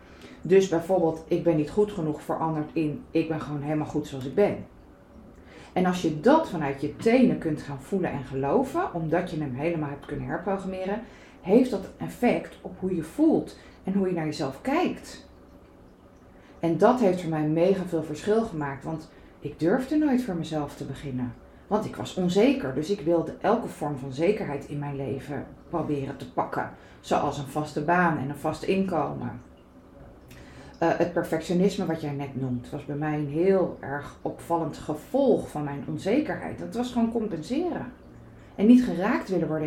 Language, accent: Dutch, Dutch